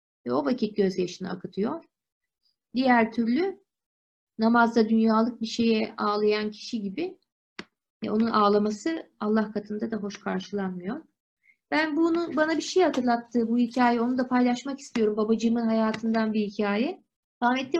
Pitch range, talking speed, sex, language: 210-270 Hz, 130 wpm, female, Turkish